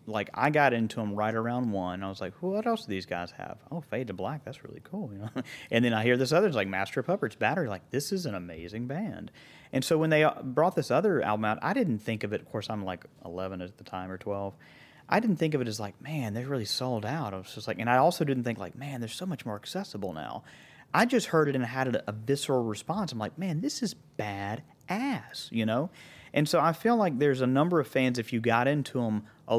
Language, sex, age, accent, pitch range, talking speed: English, male, 30-49, American, 110-150 Hz, 270 wpm